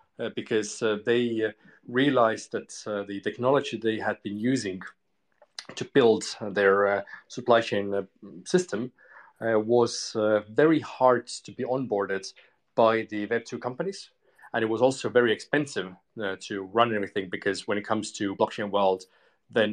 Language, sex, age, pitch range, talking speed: English, male, 30-49, 105-120 Hz, 160 wpm